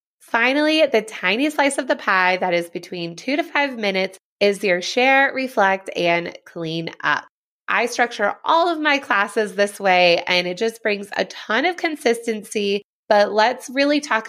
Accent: American